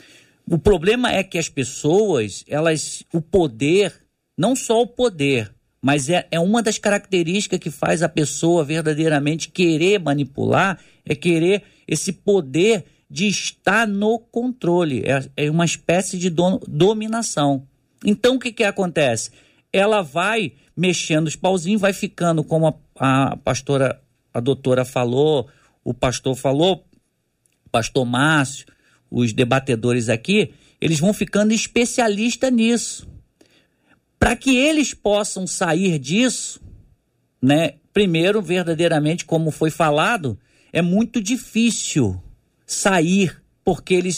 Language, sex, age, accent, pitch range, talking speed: Portuguese, male, 50-69, Brazilian, 145-205 Hz, 125 wpm